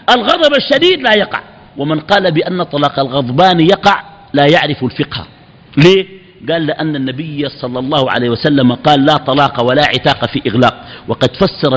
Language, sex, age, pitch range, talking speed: Arabic, male, 50-69, 145-200 Hz, 155 wpm